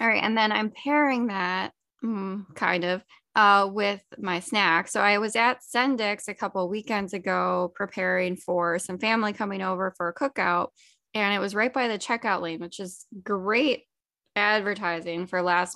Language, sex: English, female